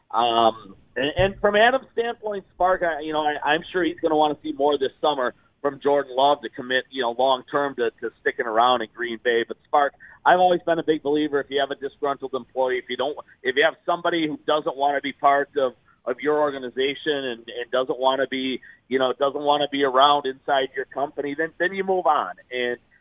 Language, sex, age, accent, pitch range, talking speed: English, male, 40-59, American, 130-155 Hz, 235 wpm